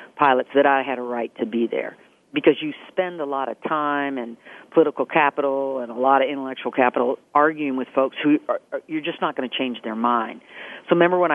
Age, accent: 50-69, American